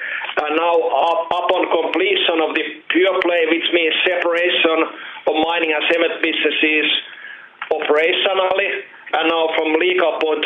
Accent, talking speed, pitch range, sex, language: Finnish, 125 wpm, 150-175 Hz, male, English